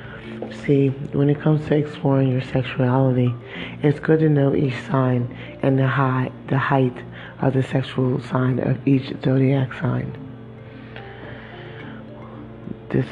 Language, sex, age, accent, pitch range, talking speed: English, male, 30-49, American, 125-140 Hz, 125 wpm